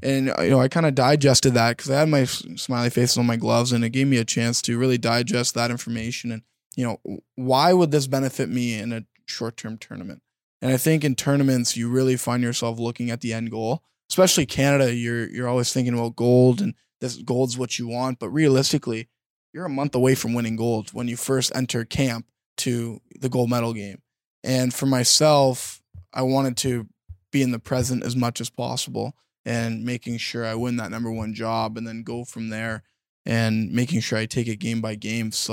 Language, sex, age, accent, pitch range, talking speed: English, male, 20-39, American, 115-135 Hz, 215 wpm